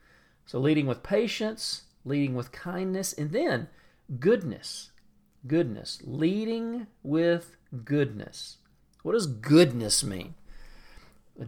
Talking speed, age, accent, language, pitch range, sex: 100 wpm, 40-59, American, English, 125-165 Hz, male